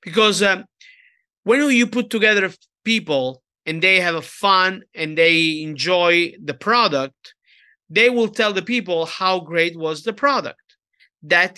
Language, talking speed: English, 145 wpm